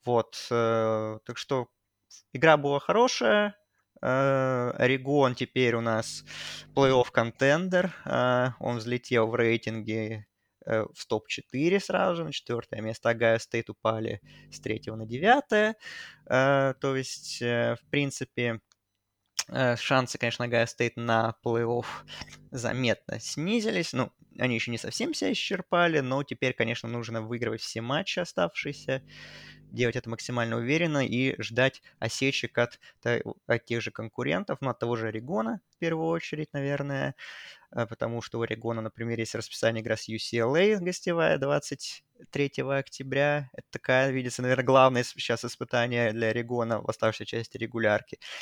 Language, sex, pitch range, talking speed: Russian, male, 115-135 Hz, 135 wpm